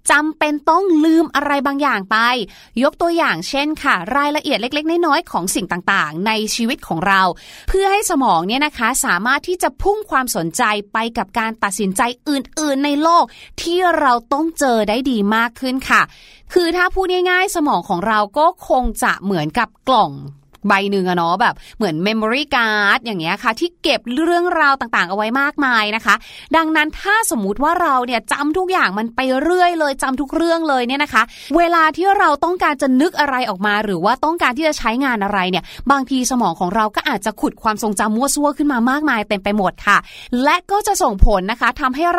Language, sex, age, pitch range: Thai, female, 30-49, 220-320 Hz